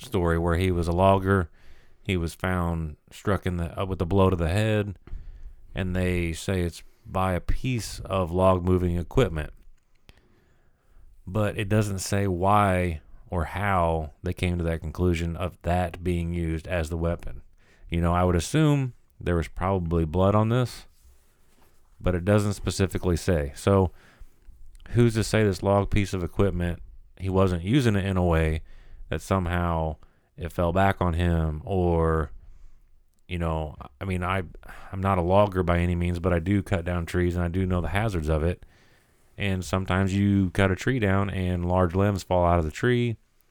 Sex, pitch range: male, 85-100 Hz